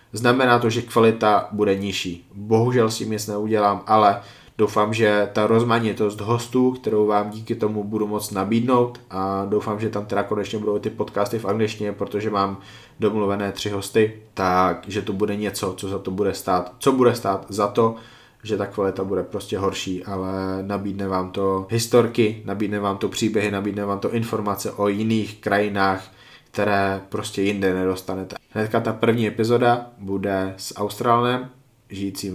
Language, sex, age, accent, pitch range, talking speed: Czech, male, 20-39, native, 100-110 Hz, 160 wpm